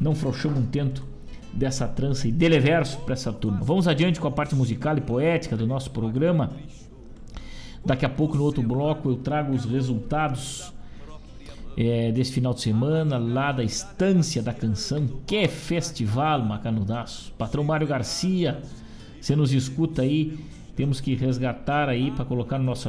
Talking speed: 160 wpm